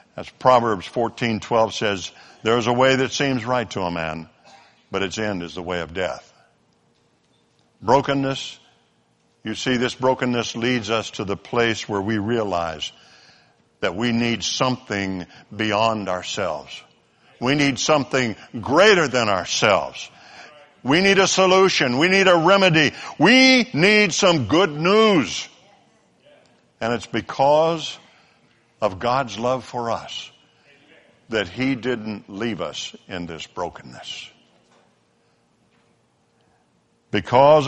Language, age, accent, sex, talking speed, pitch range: English, 60-79, American, male, 125 wpm, 105-155 Hz